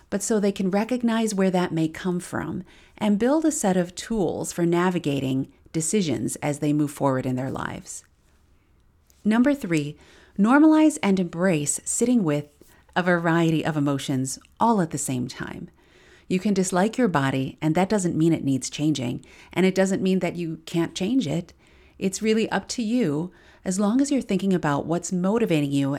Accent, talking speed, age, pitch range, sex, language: American, 180 wpm, 40-59, 150-205 Hz, female, English